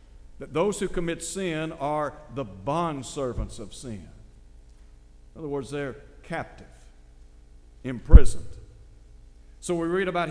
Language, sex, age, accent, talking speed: English, male, 60-79, American, 115 wpm